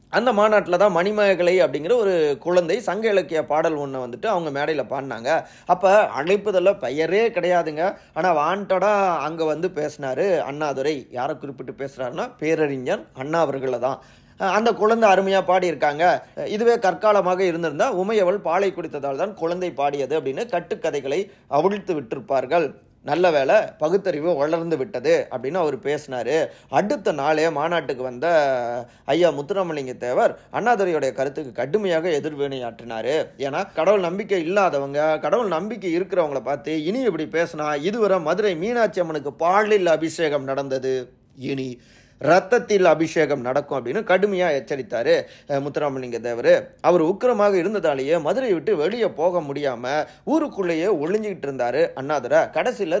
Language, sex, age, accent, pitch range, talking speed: Tamil, male, 30-49, native, 140-195 Hz, 115 wpm